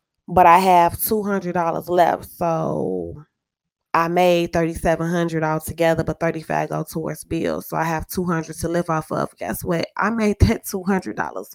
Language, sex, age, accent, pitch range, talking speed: English, female, 20-39, American, 170-225 Hz, 185 wpm